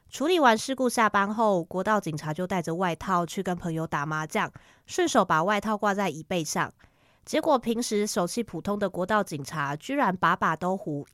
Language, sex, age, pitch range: Chinese, female, 20-39, 170-225 Hz